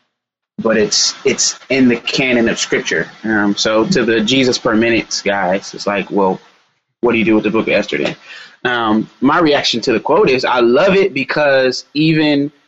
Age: 20-39